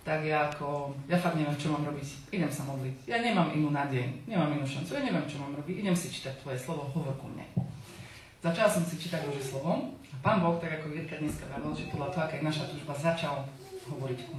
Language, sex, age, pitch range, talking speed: Czech, female, 40-59, 140-170 Hz, 250 wpm